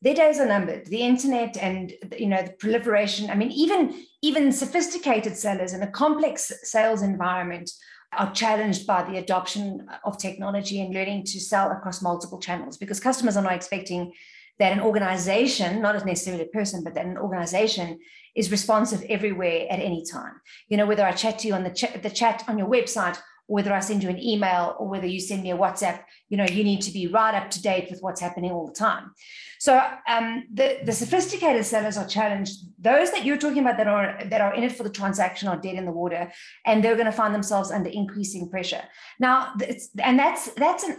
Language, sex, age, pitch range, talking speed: English, female, 40-59, 190-250 Hz, 210 wpm